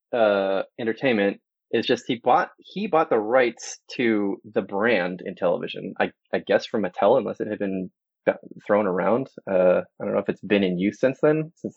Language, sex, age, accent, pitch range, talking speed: English, male, 20-39, American, 105-135 Hz, 195 wpm